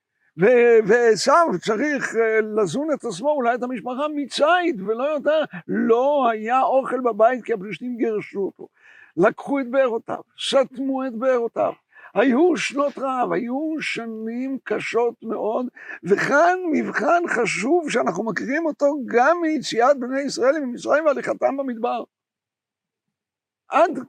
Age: 60-79